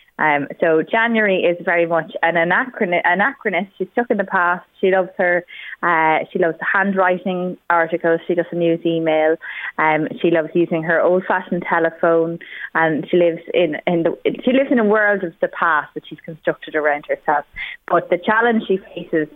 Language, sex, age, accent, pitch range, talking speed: English, female, 20-39, Irish, 155-185 Hz, 185 wpm